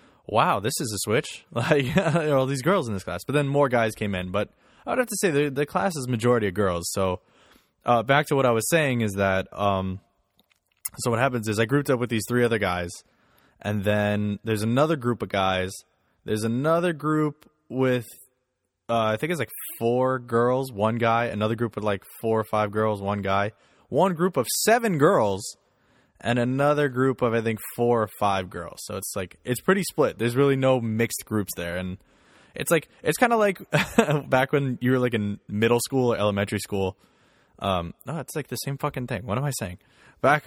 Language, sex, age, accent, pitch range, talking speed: English, male, 20-39, American, 105-135 Hz, 210 wpm